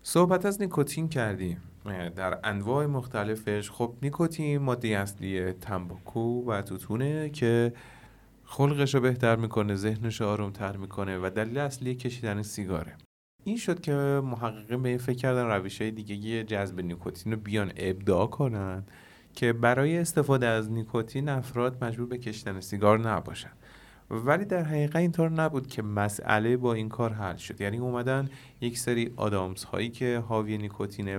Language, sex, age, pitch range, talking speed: Persian, male, 30-49, 105-130 Hz, 150 wpm